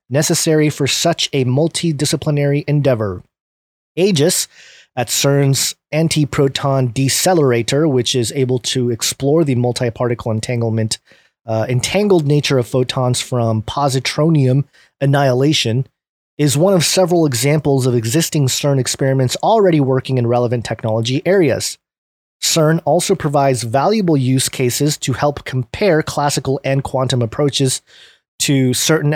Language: English